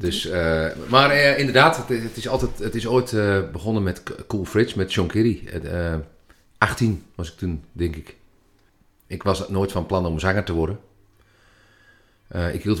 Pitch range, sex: 80-100 Hz, male